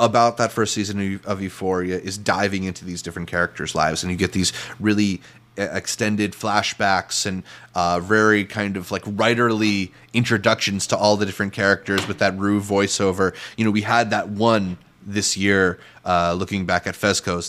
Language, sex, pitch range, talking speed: English, male, 95-120 Hz, 170 wpm